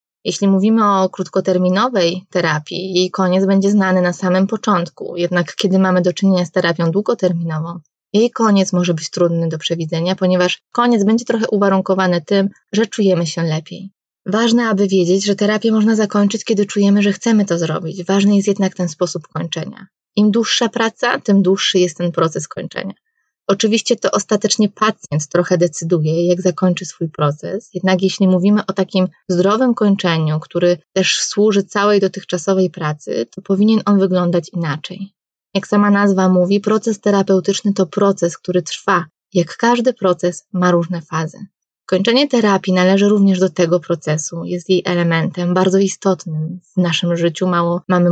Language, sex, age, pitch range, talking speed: Polish, female, 20-39, 175-200 Hz, 155 wpm